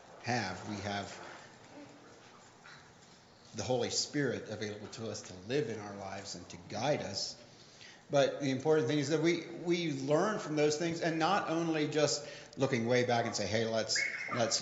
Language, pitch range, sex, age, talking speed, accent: English, 110-145 Hz, male, 40-59, 170 wpm, American